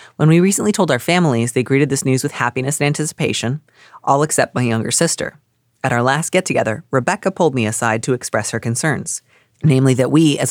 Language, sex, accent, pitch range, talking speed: English, female, American, 115-145 Hz, 200 wpm